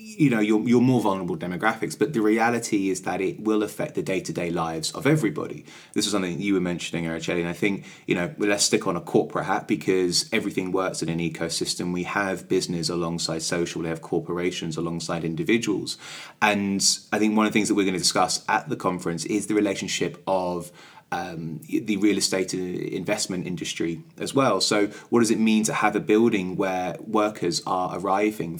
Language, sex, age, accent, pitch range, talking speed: English, male, 20-39, British, 90-110 Hz, 200 wpm